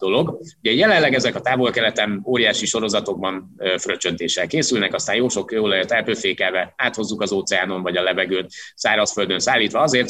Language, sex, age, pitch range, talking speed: Hungarian, male, 30-49, 100-120 Hz, 145 wpm